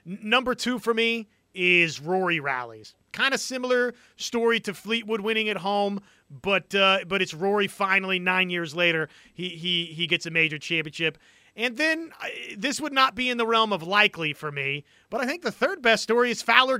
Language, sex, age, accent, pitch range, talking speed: English, male, 30-49, American, 170-230 Hz, 195 wpm